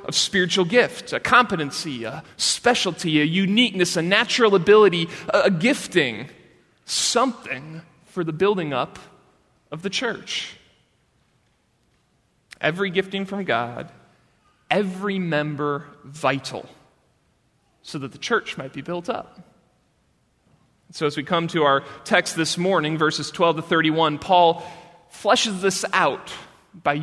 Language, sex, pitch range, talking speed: English, male, 150-195 Hz, 125 wpm